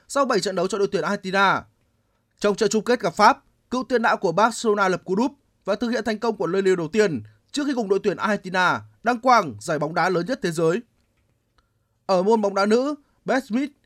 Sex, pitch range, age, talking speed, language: male, 170-230 Hz, 20-39, 235 wpm, Vietnamese